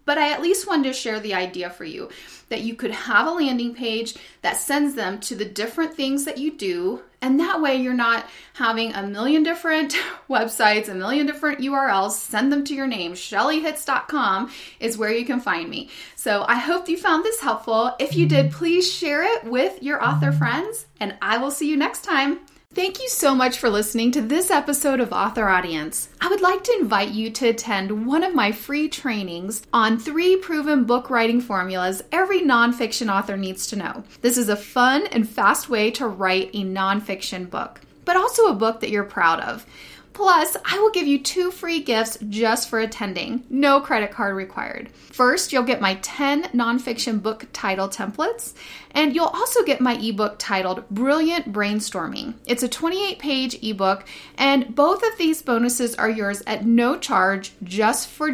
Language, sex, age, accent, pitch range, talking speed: English, female, 30-49, American, 215-300 Hz, 190 wpm